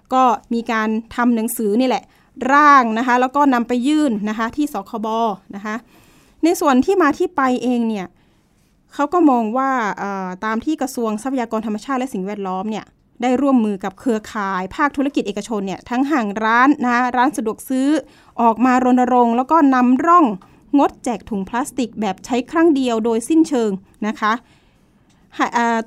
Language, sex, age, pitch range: Thai, female, 20-39, 220-275 Hz